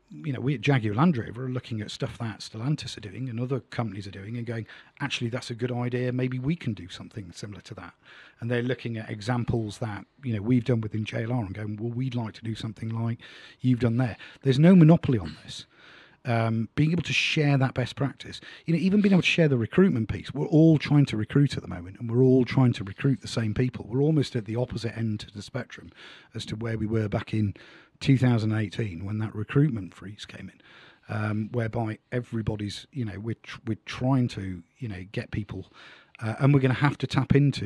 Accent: British